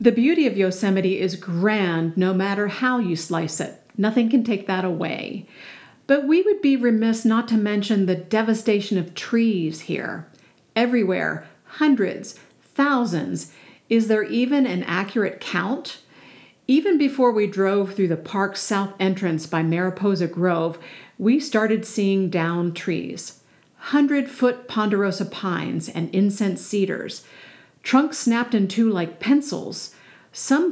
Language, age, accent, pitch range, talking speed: English, 50-69, American, 180-235 Hz, 135 wpm